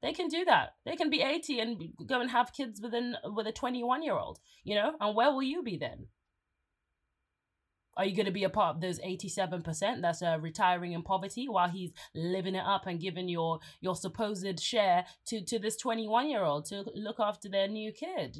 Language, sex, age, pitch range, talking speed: English, female, 20-39, 170-245 Hz, 200 wpm